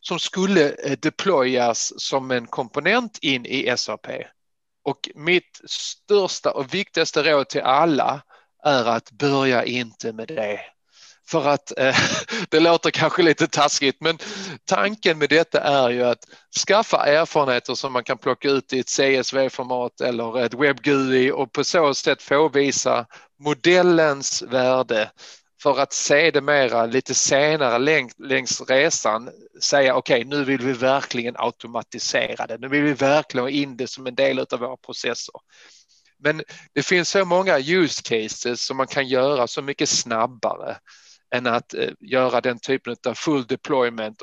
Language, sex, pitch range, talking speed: Danish, male, 125-160 Hz, 150 wpm